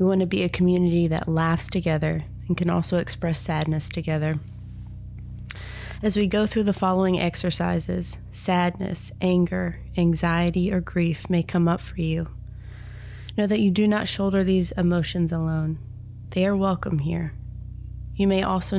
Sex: female